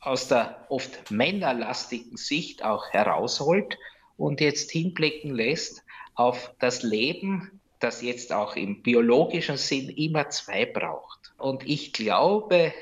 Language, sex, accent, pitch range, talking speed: German, male, Austrian, 120-155 Hz, 120 wpm